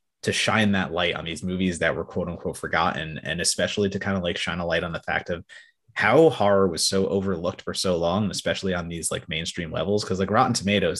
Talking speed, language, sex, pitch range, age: 235 wpm, English, male, 95-110 Hz, 30-49